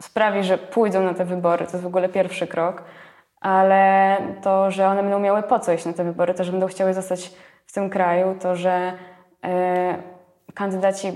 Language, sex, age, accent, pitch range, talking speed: Polish, female, 20-39, native, 180-200 Hz, 190 wpm